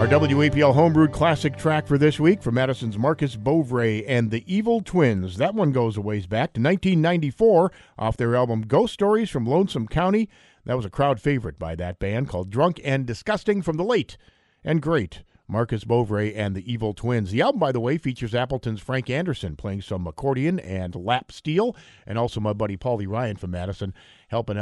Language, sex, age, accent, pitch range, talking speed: English, male, 50-69, American, 110-155 Hz, 195 wpm